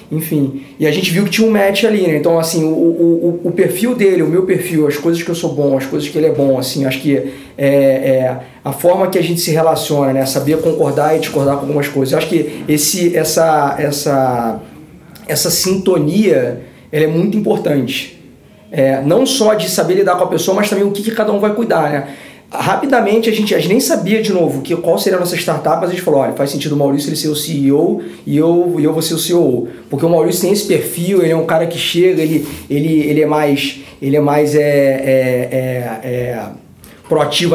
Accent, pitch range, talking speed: Brazilian, 140-175 Hz, 230 wpm